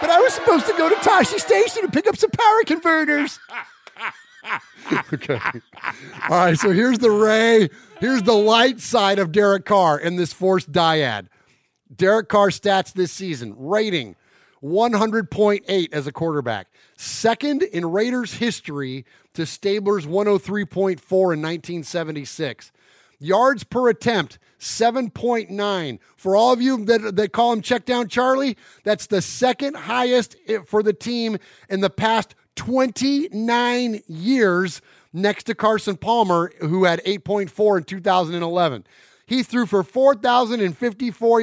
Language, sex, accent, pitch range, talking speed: English, male, American, 180-240 Hz, 130 wpm